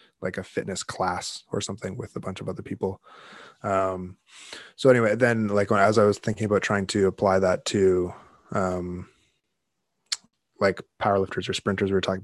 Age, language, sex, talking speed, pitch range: 20-39, English, male, 175 wpm, 95-105 Hz